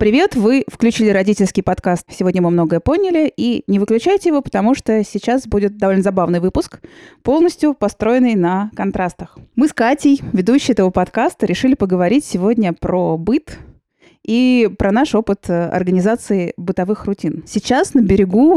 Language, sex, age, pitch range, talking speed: Russian, female, 20-39, 175-220 Hz, 145 wpm